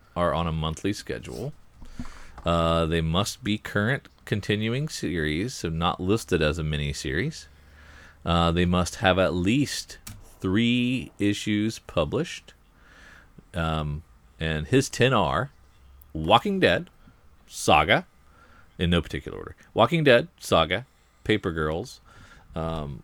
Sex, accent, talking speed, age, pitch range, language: male, American, 120 wpm, 40-59, 80-105 Hz, English